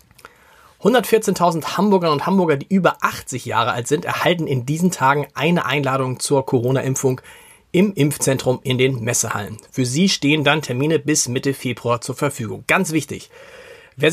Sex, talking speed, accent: male, 155 wpm, German